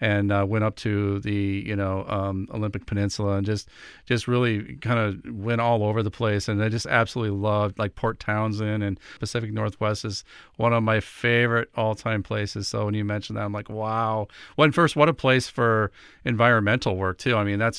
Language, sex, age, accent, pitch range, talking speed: English, male, 40-59, American, 100-115 Hz, 210 wpm